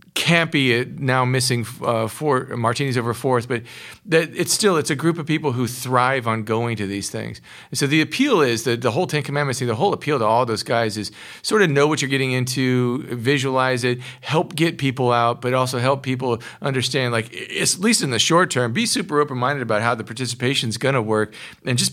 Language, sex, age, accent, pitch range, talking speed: English, male, 40-59, American, 115-145 Hz, 235 wpm